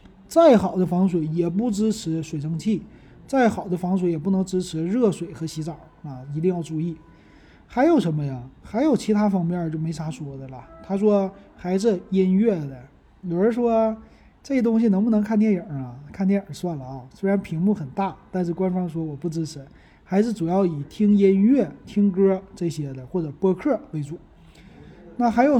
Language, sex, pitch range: Chinese, male, 165-210 Hz